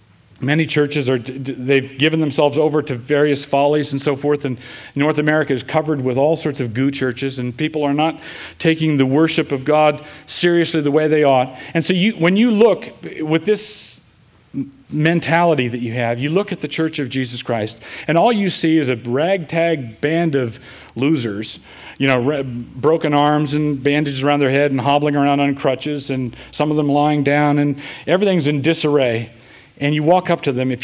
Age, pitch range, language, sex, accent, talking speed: 40-59, 125-155 Hz, English, male, American, 195 wpm